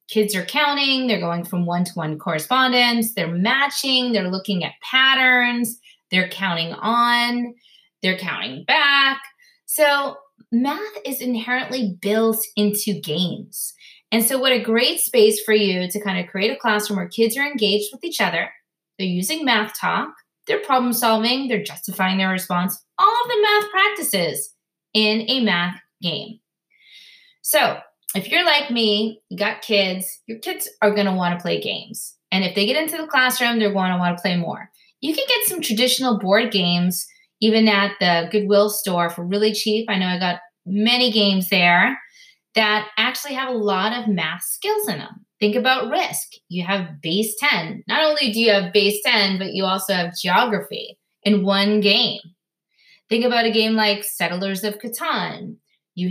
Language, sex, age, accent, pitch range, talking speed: English, female, 20-39, American, 190-250 Hz, 175 wpm